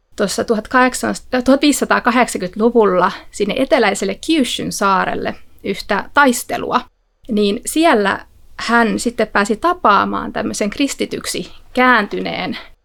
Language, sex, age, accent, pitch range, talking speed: Finnish, female, 30-49, native, 205-250 Hz, 80 wpm